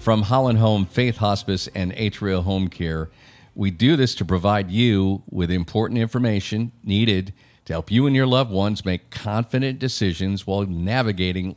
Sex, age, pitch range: male, 50-69, 95-125 Hz